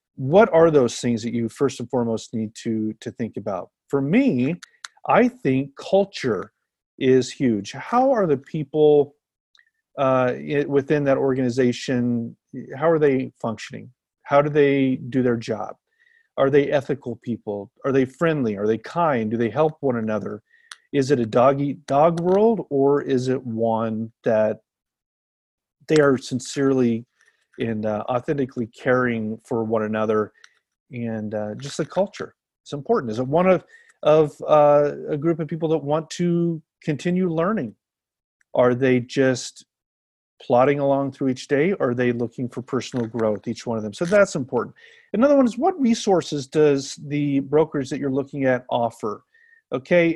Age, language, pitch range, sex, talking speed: 40-59, English, 120-160 Hz, male, 155 wpm